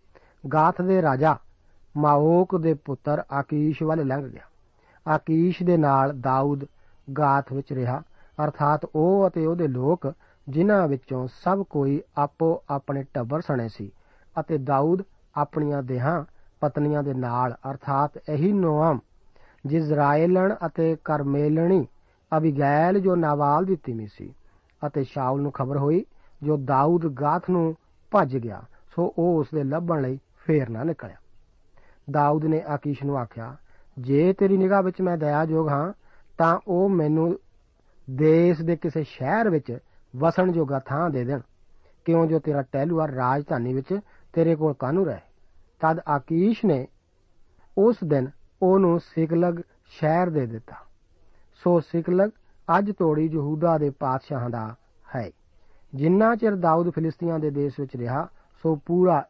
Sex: male